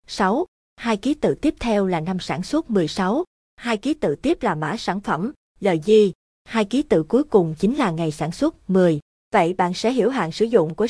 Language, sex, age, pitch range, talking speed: Vietnamese, female, 20-39, 180-235 Hz, 220 wpm